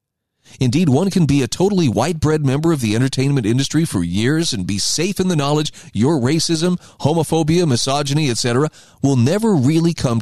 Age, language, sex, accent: 40-59, English, male, American